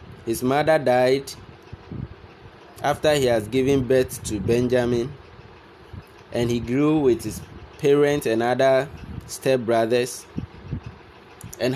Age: 20-39